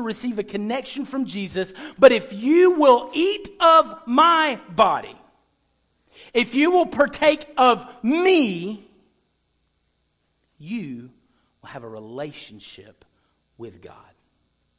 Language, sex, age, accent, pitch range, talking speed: English, male, 50-69, American, 185-245 Hz, 105 wpm